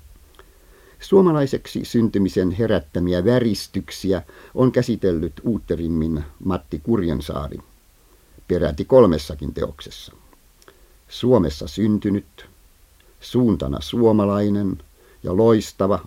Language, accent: Finnish, native